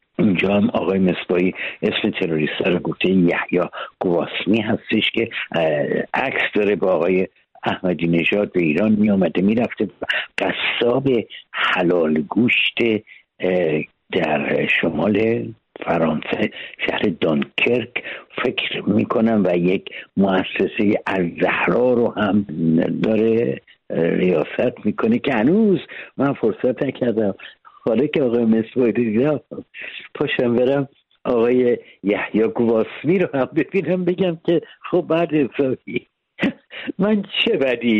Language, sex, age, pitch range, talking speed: Persian, male, 60-79, 100-135 Hz, 110 wpm